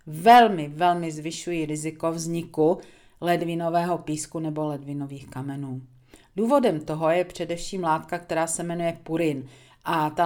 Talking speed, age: 125 wpm, 40-59